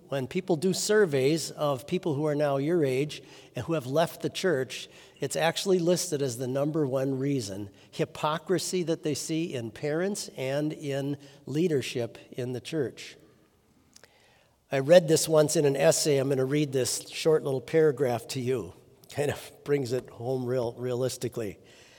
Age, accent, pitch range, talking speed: 50-69, American, 135-170 Hz, 170 wpm